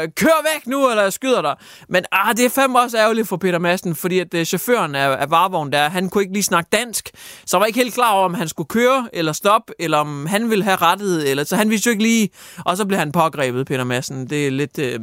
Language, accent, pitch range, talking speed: Danish, native, 155-210 Hz, 260 wpm